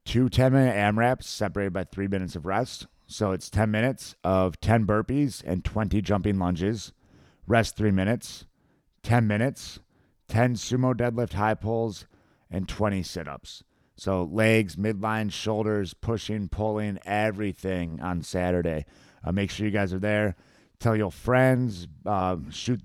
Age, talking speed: 30-49, 140 wpm